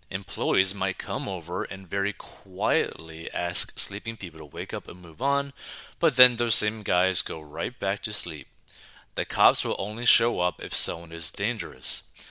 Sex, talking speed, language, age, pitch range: male, 175 wpm, English, 30-49, 90-120 Hz